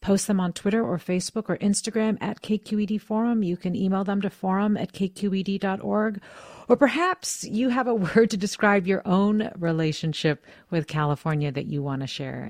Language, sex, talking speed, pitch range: English, female, 180 wpm, 155-215 Hz